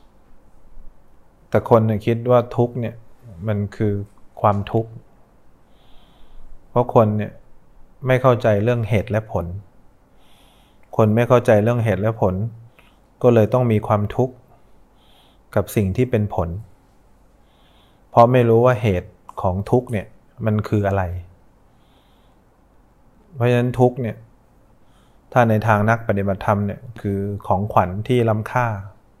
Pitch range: 105-120 Hz